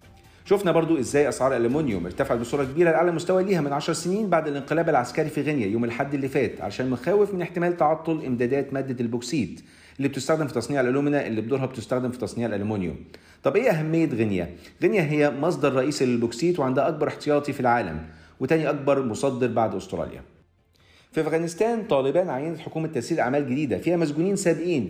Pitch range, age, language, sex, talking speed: 115-160 Hz, 40-59, Arabic, male, 175 wpm